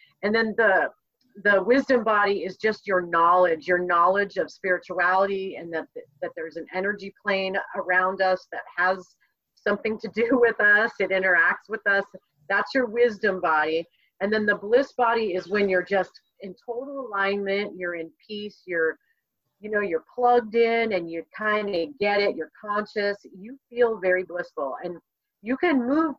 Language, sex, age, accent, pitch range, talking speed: English, female, 40-59, American, 185-235 Hz, 170 wpm